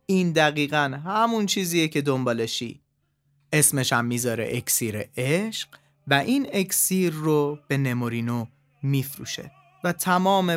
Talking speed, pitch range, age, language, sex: 115 wpm, 135-175 Hz, 30-49, Persian, male